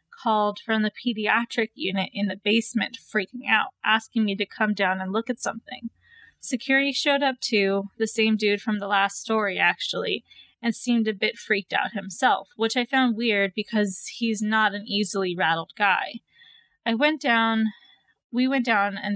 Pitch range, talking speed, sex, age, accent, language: 205-245 Hz, 175 wpm, female, 20-39, American, English